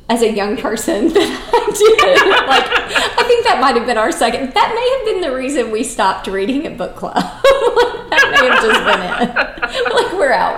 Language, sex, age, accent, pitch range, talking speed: English, female, 30-49, American, 180-265 Hz, 210 wpm